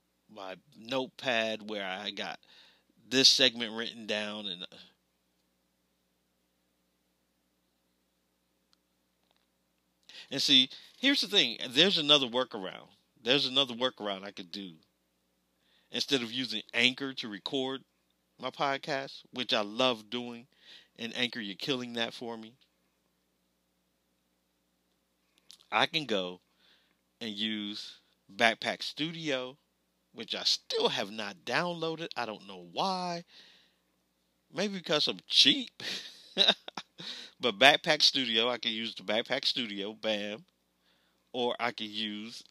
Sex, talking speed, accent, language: male, 110 wpm, American, English